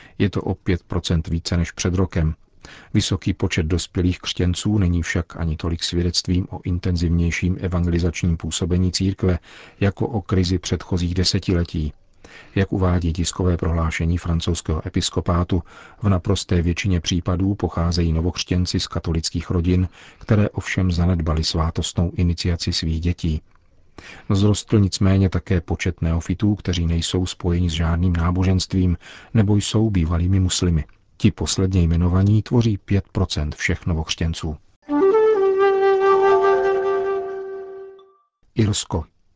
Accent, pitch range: native, 90-105 Hz